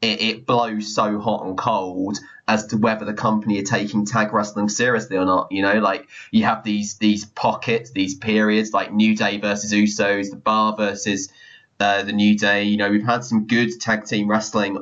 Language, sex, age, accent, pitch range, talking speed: English, male, 20-39, British, 105-125 Hz, 200 wpm